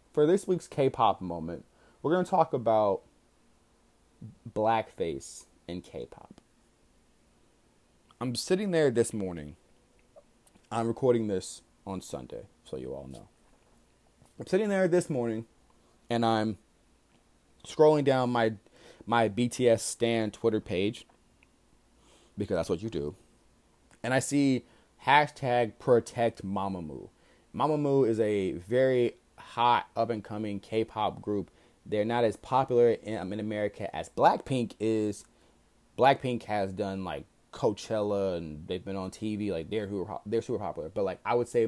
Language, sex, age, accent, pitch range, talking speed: English, male, 20-39, American, 95-120 Hz, 130 wpm